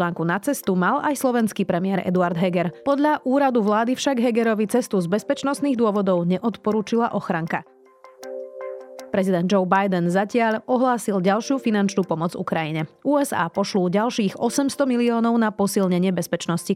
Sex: female